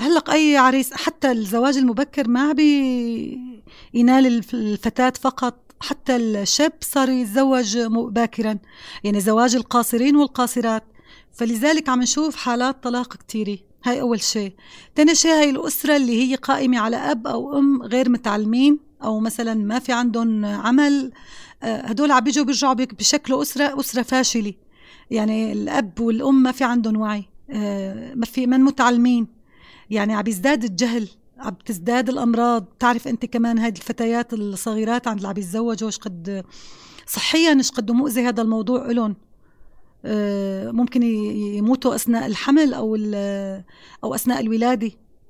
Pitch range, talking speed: 220-270 Hz, 125 wpm